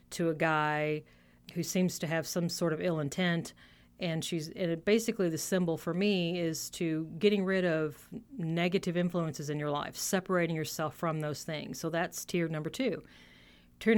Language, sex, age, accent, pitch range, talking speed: English, female, 40-59, American, 145-185 Hz, 180 wpm